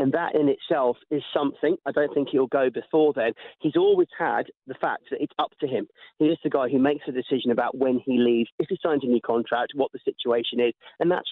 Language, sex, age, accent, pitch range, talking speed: English, male, 40-59, British, 130-165 Hz, 250 wpm